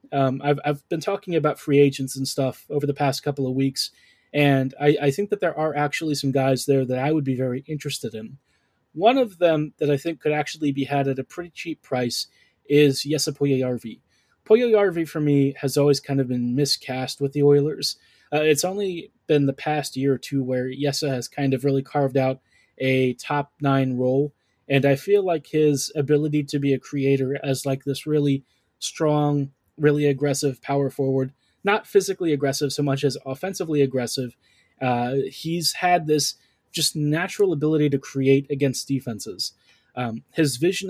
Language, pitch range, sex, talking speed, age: English, 135-150 Hz, male, 185 wpm, 20-39